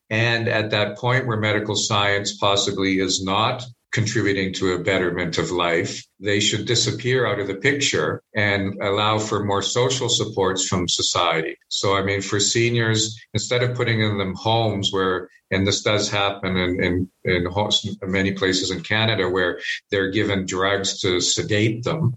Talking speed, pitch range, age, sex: 160 wpm, 100-120 Hz, 50-69, male